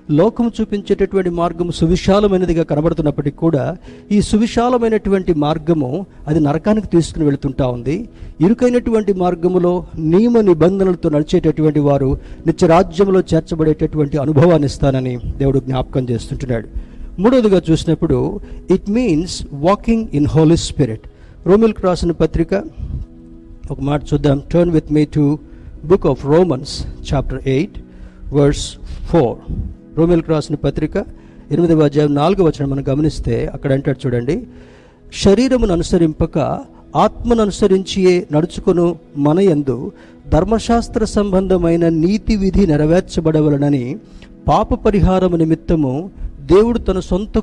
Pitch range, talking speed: 145-190 Hz, 100 wpm